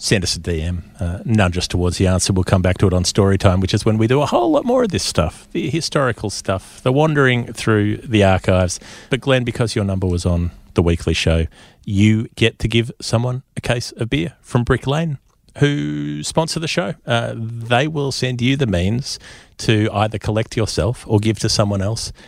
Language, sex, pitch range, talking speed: English, male, 95-125 Hz, 215 wpm